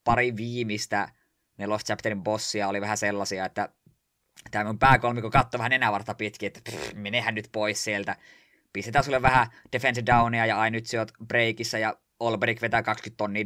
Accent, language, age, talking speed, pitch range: native, Finnish, 20-39, 155 wpm, 105-130 Hz